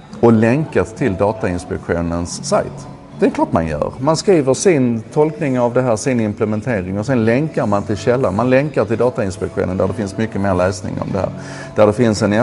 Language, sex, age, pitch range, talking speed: Swedish, male, 30-49, 95-125 Hz, 205 wpm